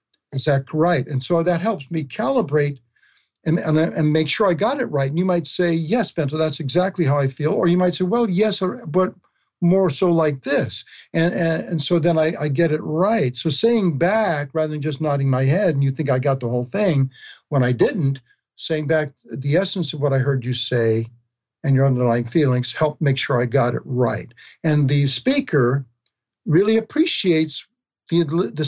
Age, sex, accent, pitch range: 60-79, male, American, 140-180 Hz